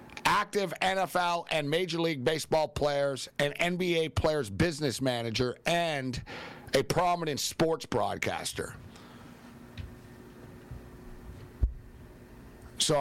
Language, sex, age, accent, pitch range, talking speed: English, male, 50-69, American, 130-175 Hz, 85 wpm